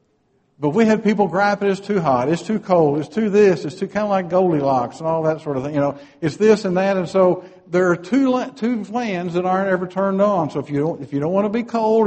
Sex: male